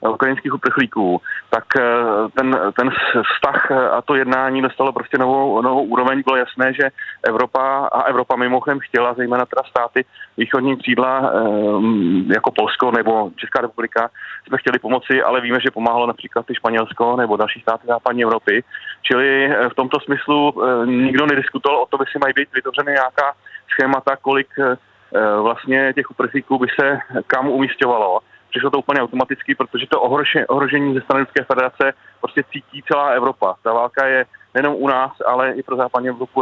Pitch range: 125-135 Hz